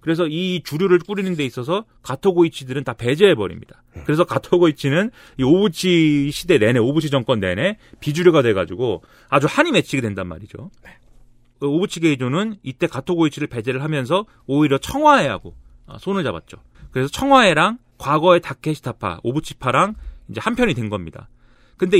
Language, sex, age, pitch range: Korean, male, 30-49, 125-175 Hz